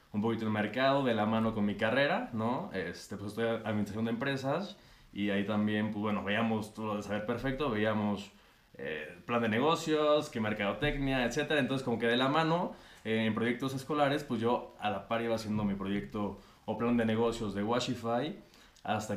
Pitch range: 105-130 Hz